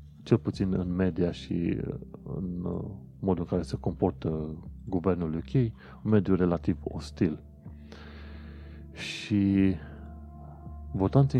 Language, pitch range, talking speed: Romanian, 80-100 Hz, 100 wpm